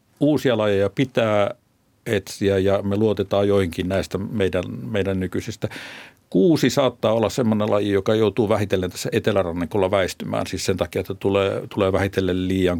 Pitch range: 100-115 Hz